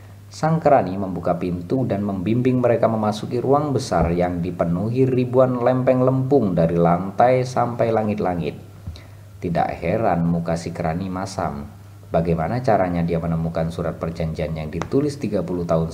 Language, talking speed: Indonesian, 130 wpm